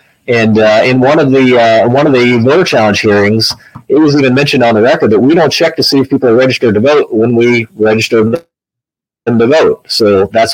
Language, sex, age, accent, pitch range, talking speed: English, male, 30-49, American, 110-140 Hz, 220 wpm